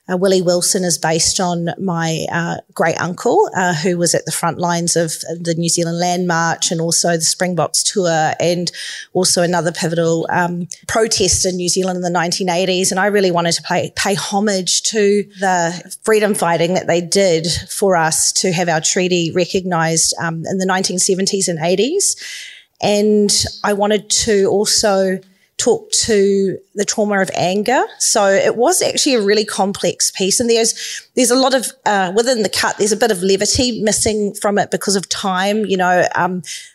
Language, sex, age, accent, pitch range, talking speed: English, female, 30-49, Australian, 175-205 Hz, 185 wpm